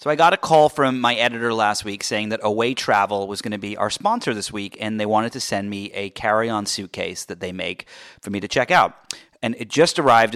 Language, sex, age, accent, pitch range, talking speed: English, male, 30-49, American, 105-130 Hz, 250 wpm